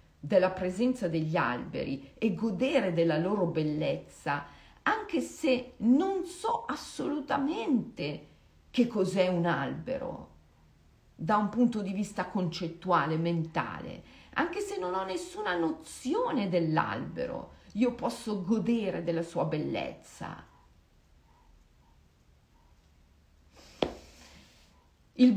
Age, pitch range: 40-59, 160-245 Hz